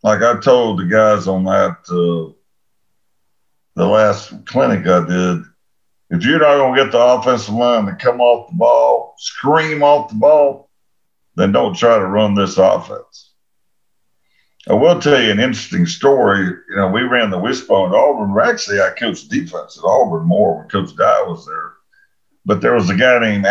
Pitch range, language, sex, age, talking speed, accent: 90-135 Hz, English, male, 50-69, 180 wpm, American